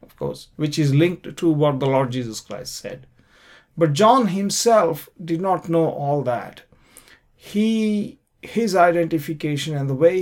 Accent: Indian